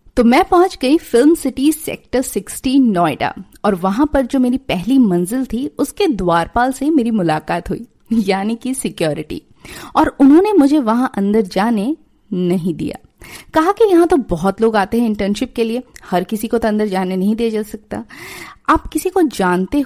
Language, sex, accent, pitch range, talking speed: Hindi, female, native, 200-290 Hz, 180 wpm